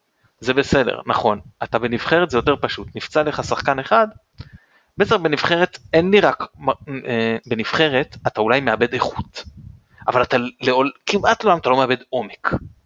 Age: 30-49